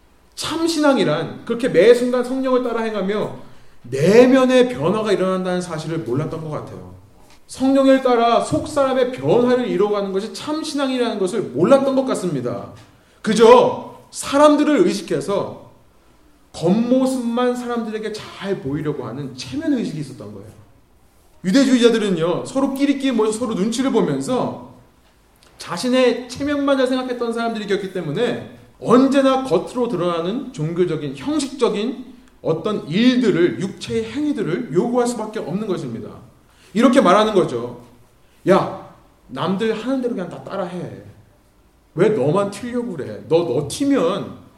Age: 30-49